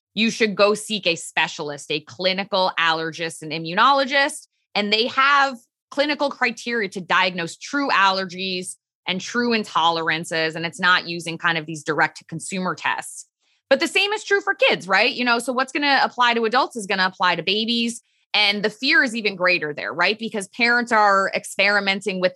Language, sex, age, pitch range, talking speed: English, female, 20-39, 170-225 Hz, 190 wpm